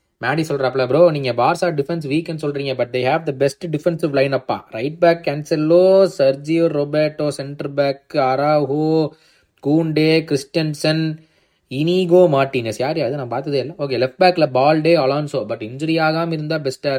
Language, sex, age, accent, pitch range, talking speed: Tamil, male, 20-39, native, 130-160 Hz, 140 wpm